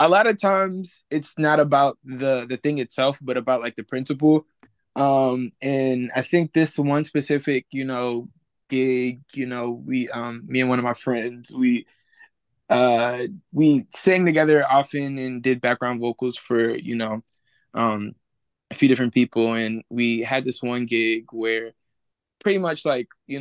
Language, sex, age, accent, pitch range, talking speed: English, male, 20-39, American, 120-155 Hz, 165 wpm